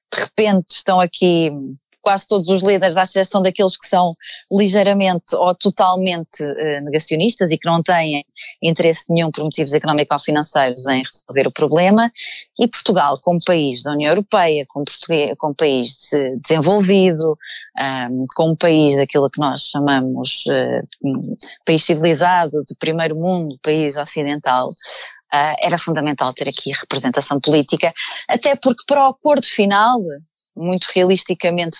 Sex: female